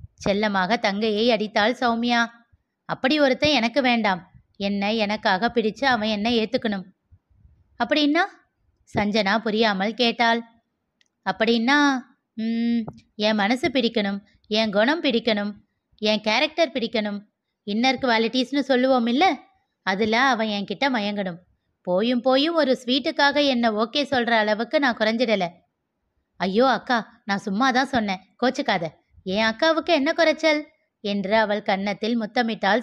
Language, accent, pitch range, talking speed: Tamil, native, 210-260 Hz, 110 wpm